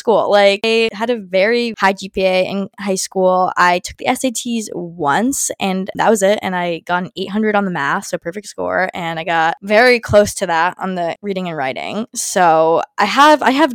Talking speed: 210 wpm